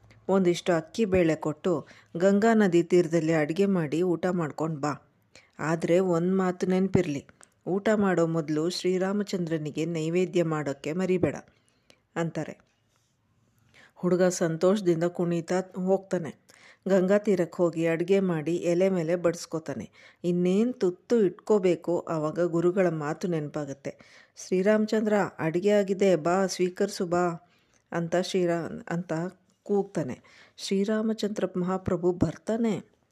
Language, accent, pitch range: Kannada, native, 165-190 Hz